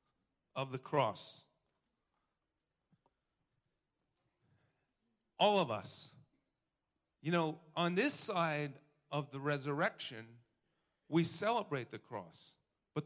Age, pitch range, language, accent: 40-59, 145-180 Hz, English, American